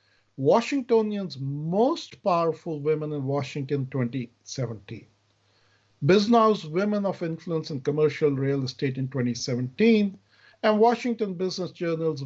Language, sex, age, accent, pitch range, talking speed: English, male, 50-69, Indian, 125-185 Hz, 105 wpm